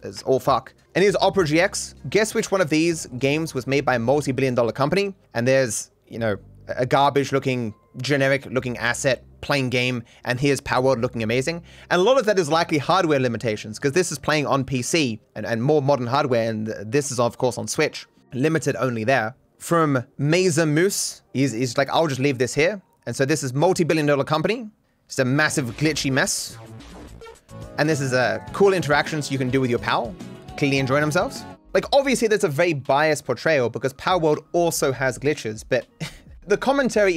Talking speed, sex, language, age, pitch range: 200 wpm, male, English, 30-49, 130-165 Hz